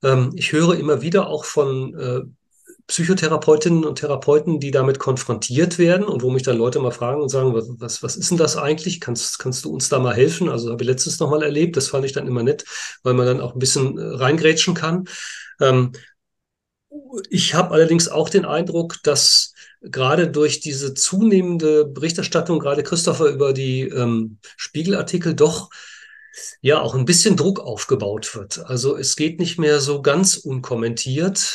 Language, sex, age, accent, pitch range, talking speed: German, male, 40-59, German, 130-175 Hz, 170 wpm